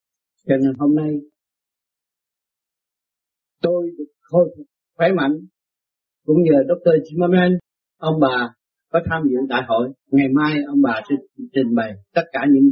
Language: Vietnamese